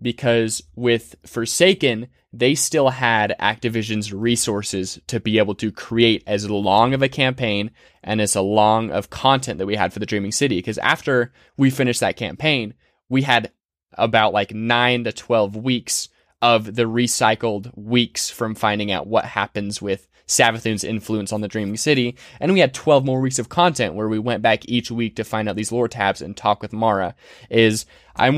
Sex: male